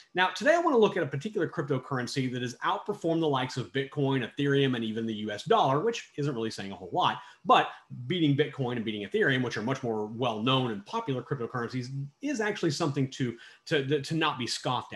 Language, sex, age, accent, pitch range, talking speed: English, male, 30-49, American, 130-185 Hz, 215 wpm